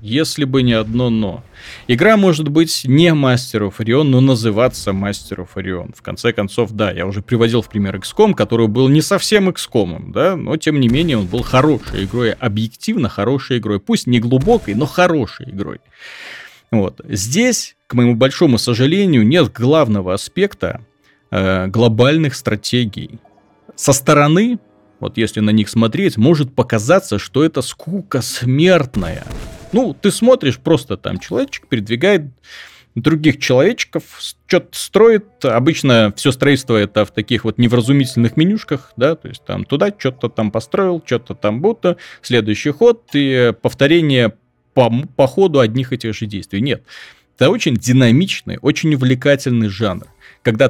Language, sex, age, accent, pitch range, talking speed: Russian, male, 30-49, native, 110-150 Hz, 145 wpm